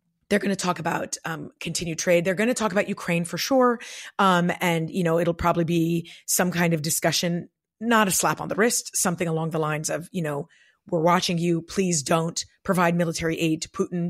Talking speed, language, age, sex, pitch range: 215 wpm, English, 30-49, female, 165-190 Hz